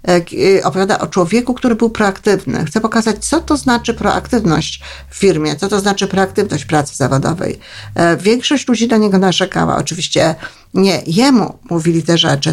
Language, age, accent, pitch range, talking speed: Polish, 50-69, native, 165-220 Hz, 150 wpm